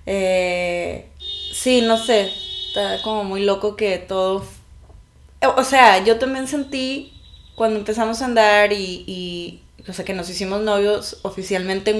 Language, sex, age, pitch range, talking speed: English, female, 20-39, 185-230 Hz, 140 wpm